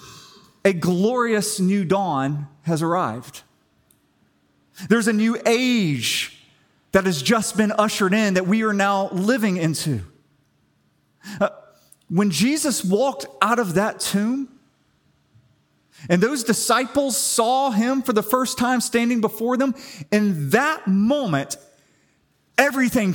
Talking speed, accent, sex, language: 120 wpm, American, male, English